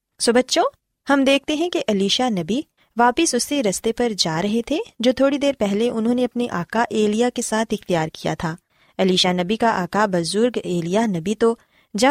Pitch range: 190-255 Hz